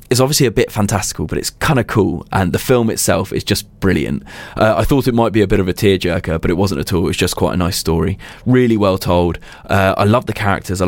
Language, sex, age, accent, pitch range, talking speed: English, male, 20-39, British, 90-105 Hz, 270 wpm